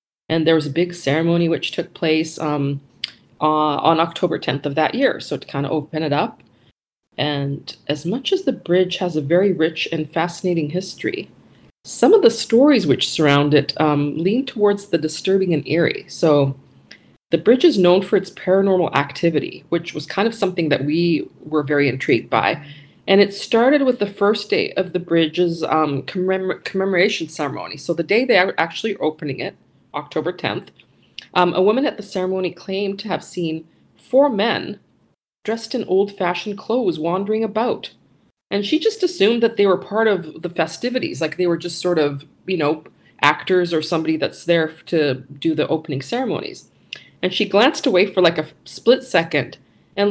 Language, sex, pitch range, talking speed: English, female, 155-200 Hz, 180 wpm